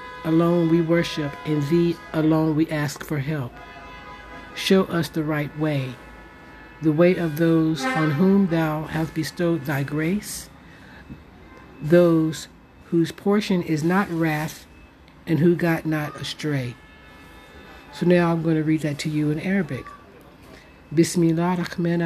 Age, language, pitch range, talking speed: 60-79, English, 150-175 Hz, 135 wpm